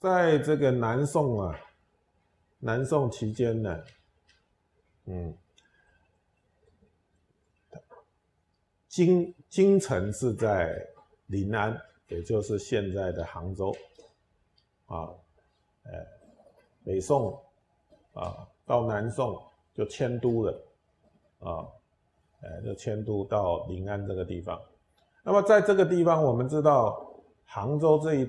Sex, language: male, Chinese